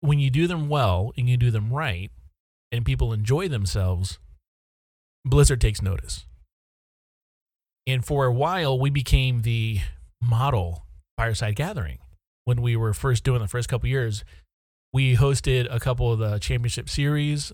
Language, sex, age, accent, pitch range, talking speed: English, male, 30-49, American, 95-130 Hz, 150 wpm